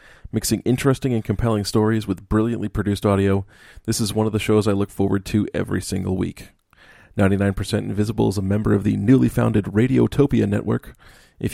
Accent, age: American, 30-49